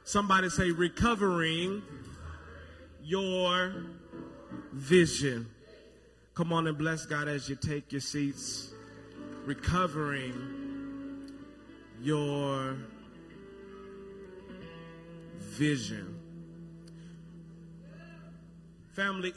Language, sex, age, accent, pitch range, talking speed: English, male, 30-49, American, 135-180 Hz, 60 wpm